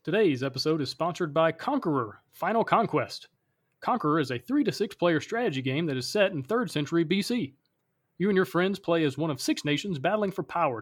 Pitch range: 145-195 Hz